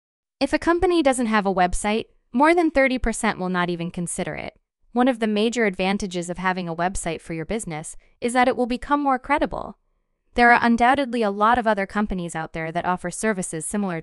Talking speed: 205 wpm